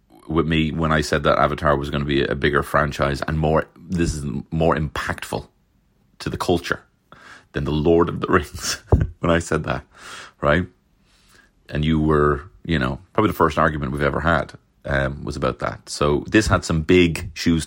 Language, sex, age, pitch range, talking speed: English, male, 30-49, 75-90 Hz, 190 wpm